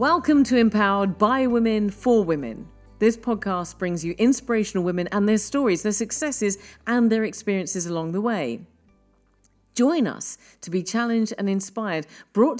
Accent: British